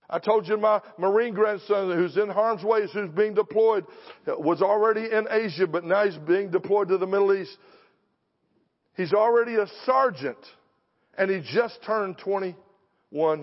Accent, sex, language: American, male, English